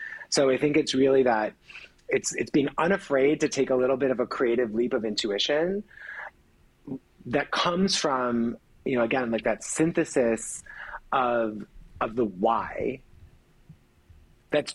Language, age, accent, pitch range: English, 30-49, American, 125-155 Hz